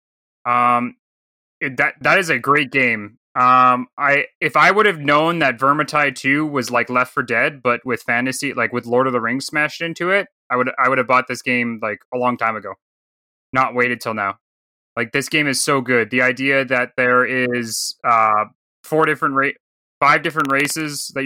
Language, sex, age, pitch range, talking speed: English, male, 20-39, 120-140 Hz, 195 wpm